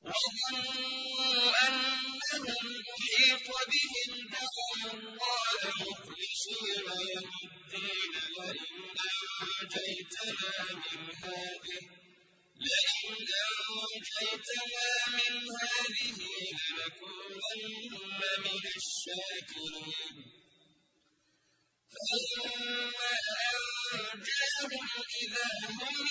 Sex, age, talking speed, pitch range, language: male, 50-69, 45 wpm, 195-255 Hz, Arabic